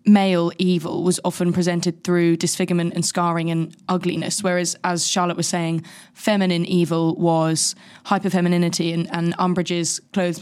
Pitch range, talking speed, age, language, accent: 170-190 Hz, 145 wpm, 20-39, English, British